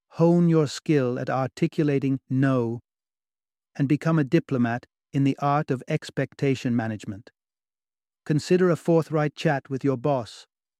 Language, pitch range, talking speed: English, 130-155 Hz, 130 wpm